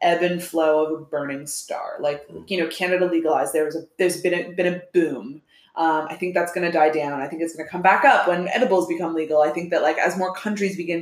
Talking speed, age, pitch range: 265 wpm, 20-39, 160-195 Hz